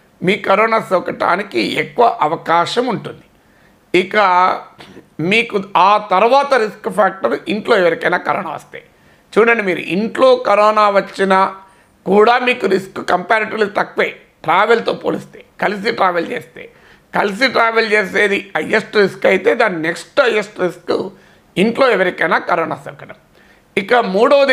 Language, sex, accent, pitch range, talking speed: Telugu, male, native, 180-235 Hz, 115 wpm